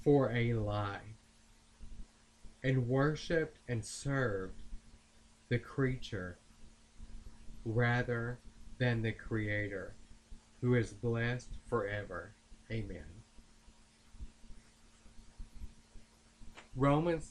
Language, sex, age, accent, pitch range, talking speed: English, male, 40-59, American, 95-125 Hz, 65 wpm